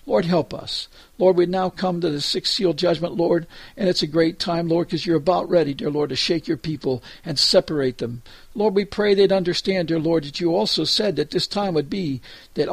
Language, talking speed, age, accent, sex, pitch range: English, 230 wpm, 60-79, American, male, 145-180 Hz